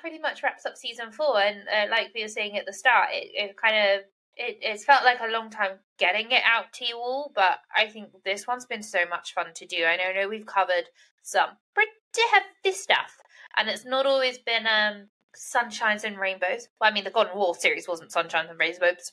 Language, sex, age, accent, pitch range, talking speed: English, female, 20-39, British, 190-255 Hz, 230 wpm